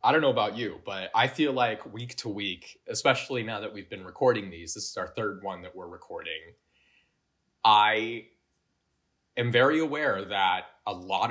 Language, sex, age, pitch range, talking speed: English, male, 20-39, 95-130 Hz, 180 wpm